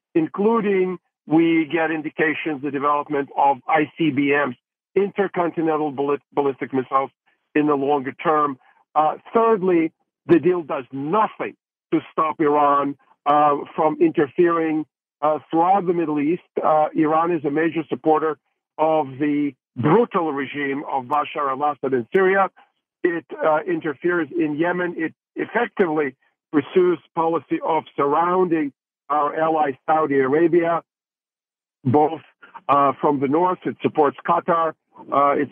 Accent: American